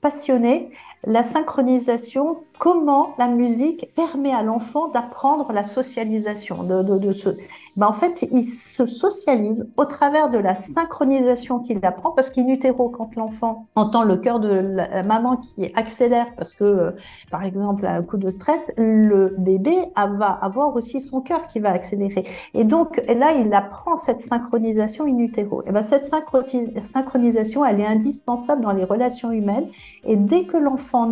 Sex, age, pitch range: female, 50-69, 210-275 Hz